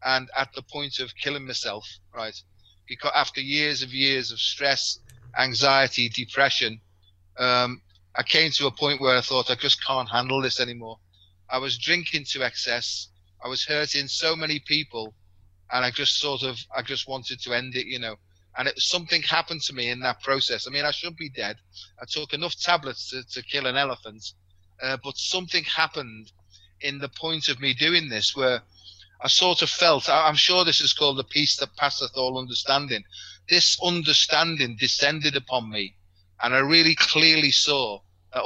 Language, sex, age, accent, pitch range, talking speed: English, male, 30-49, British, 110-145 Hz, 185 wpm